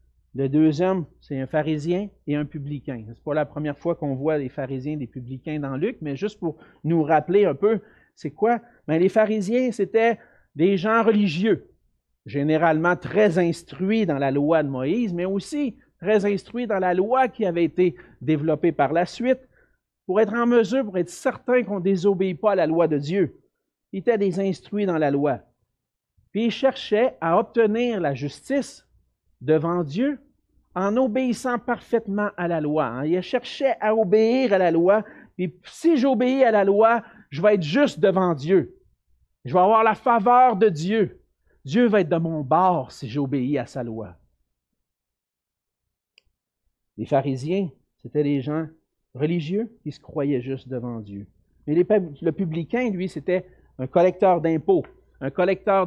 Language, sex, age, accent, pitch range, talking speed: French, male, 50-69, Canadian, 150-215 Hz, 170 wpm